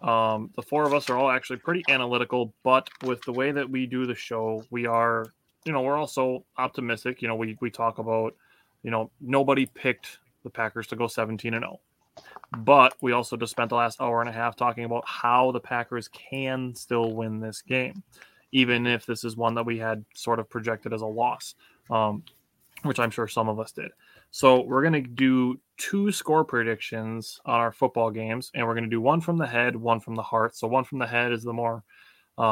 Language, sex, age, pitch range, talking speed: English, male, 20-39, 115-130 Hz, 220 wpm